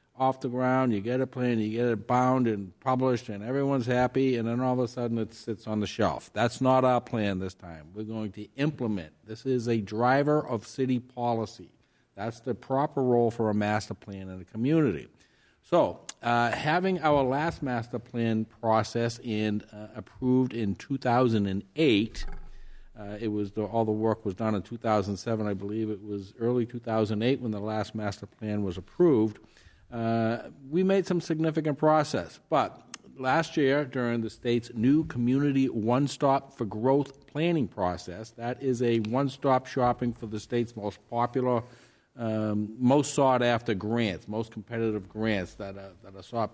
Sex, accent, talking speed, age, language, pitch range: male, American, 170 wpm, 50-69, English, 110-130 Hz